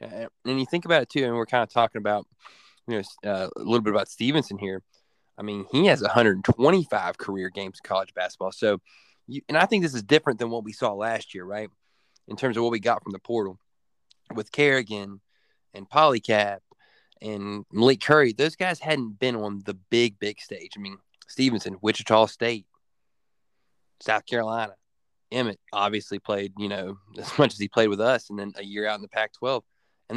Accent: American